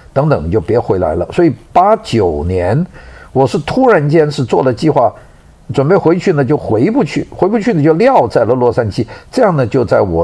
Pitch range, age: 100-155 Hz, 50-69